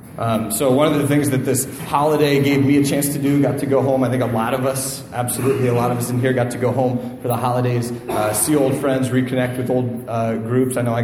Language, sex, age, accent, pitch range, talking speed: English, male, 30-49, American, 115-130 Hz, 275 wpm